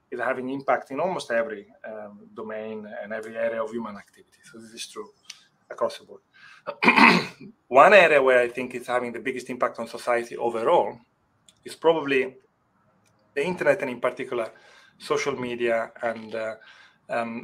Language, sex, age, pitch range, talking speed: English, male, 30-49, 115-135 Hz, 160 wpm